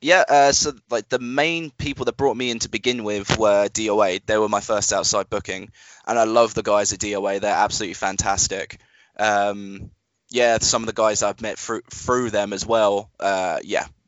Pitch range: 105-120 Hz